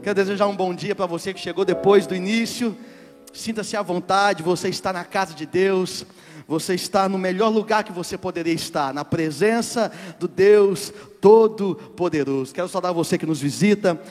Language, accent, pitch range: Portuguese, Brazilian, 155-220 Hz